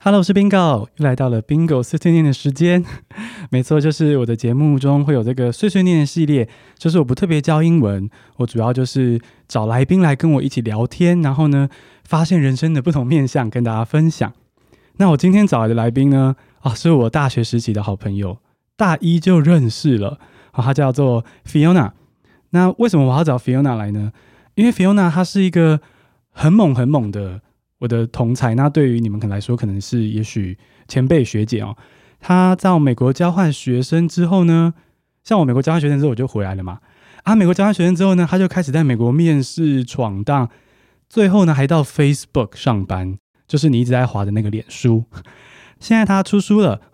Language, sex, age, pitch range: Chinese, male, 20-39, 120-165 Hz